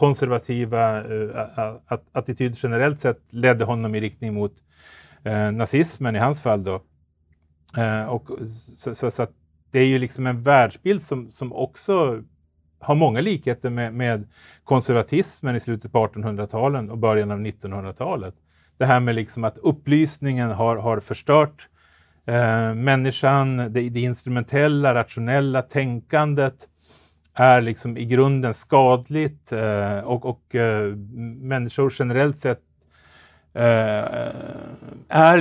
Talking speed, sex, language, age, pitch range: 105 wpm, male, Swedish, 40-59, 105-130 Hz